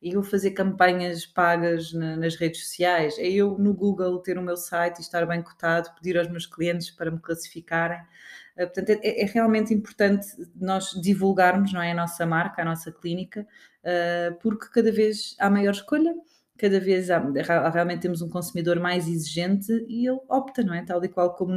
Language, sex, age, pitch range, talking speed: Portuguese, female, 20-39, 170-215 Hz, 170 wpm